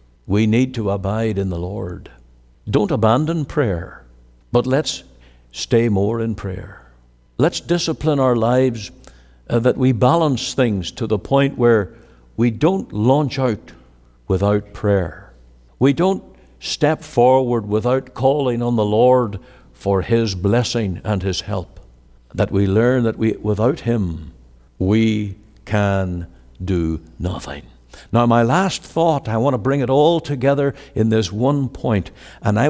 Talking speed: 145 wpm